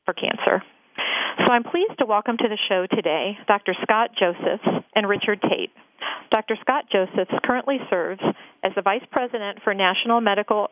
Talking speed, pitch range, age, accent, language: 160 wpm, 195-235 Hz, 40-59, American, English